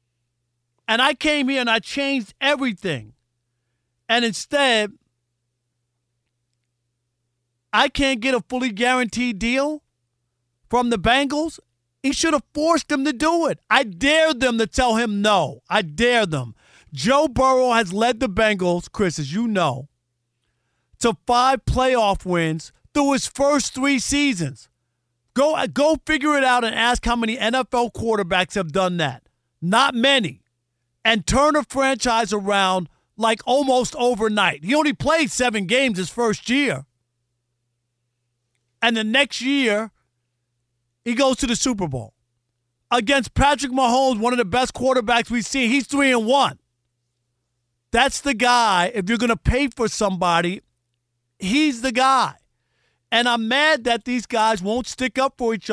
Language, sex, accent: English, male, American